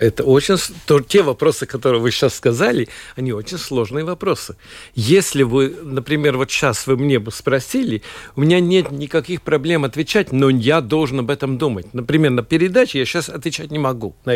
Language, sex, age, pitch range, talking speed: Russian, male, 50-69, 130-170 Hz, 175 wpm